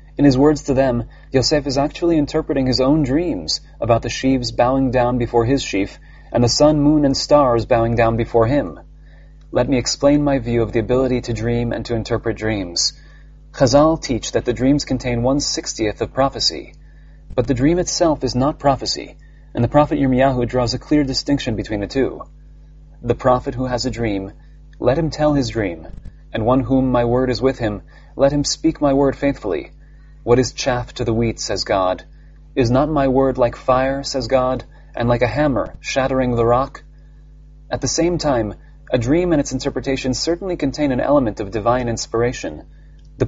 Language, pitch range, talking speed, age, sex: English, 120-145 Hz, 190 wpm, 30-49, male